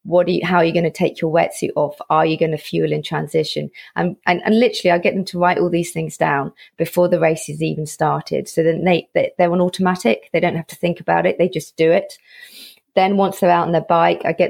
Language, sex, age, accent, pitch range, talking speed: English, female, 30-49, British, 155-180 Hz, 270 wpm